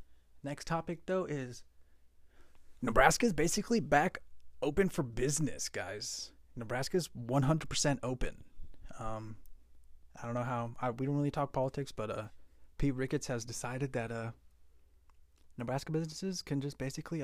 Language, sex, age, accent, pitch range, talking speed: English, male, 20-39, American, 85-130 Hz, 140 wpm